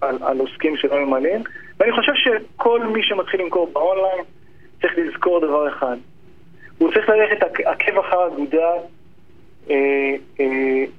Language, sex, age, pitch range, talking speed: Hebrew, male, 30-49, 150-215 Hz, 130 wpm